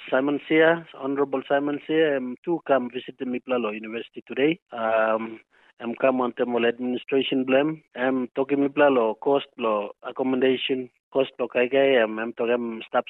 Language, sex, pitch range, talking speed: English, male, 120-150 Hz, 160 wpm